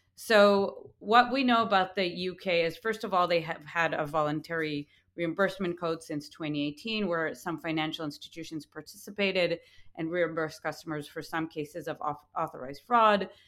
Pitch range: 155-190 Hz